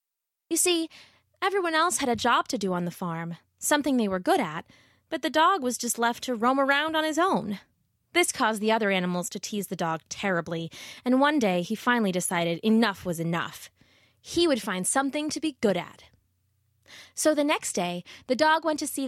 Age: 20-39